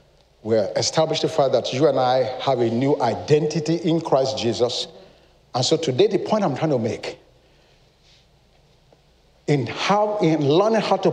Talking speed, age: 165 wpm, 50-69